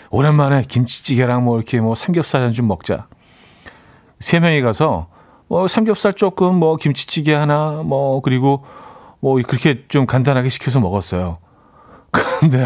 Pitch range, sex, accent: 110-160 Hz, male, native